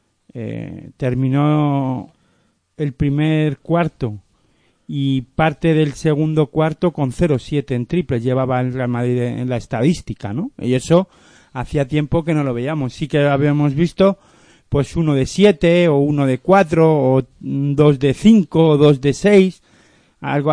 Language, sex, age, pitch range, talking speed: Spanish, male, 40-59, 125-160 Hz, 150 wpm